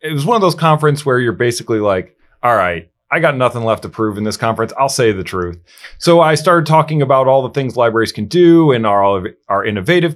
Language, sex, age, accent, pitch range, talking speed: English, male, 30-49, American, 95-125 Hz, 240 wpm